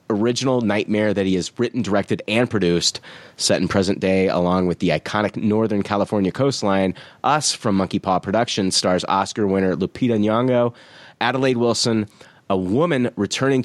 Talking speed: 155 wpm